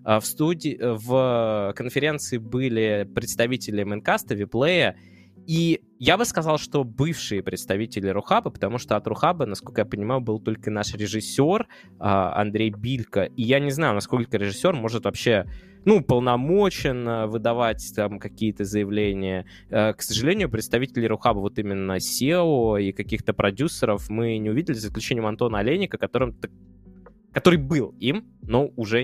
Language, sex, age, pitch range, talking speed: Russian, male, 20-39, 105-140 Hz, 135 wpm